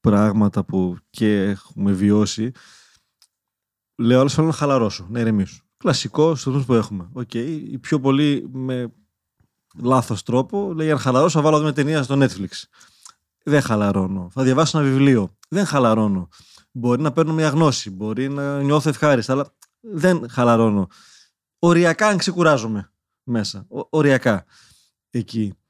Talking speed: 135 wpm